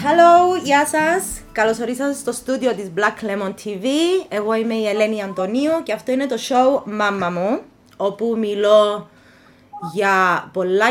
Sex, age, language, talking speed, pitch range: female, 20-39, Greek, 145 wpm, 190-250 Hz